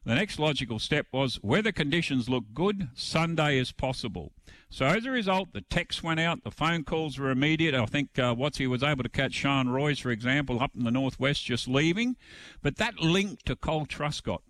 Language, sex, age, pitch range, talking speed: English, male, 50-69, 110-155 Hz, 205 wpm